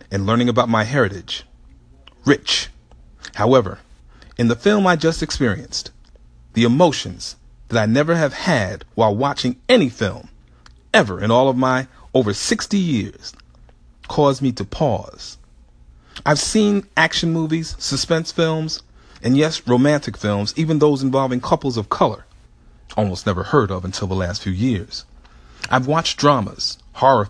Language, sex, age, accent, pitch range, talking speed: English, male, 40-59, American, 95-140 Hz, 145 wpm